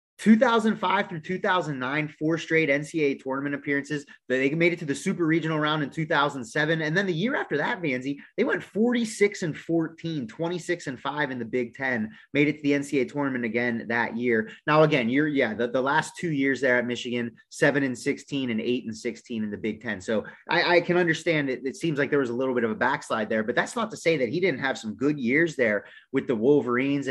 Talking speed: 230 wpm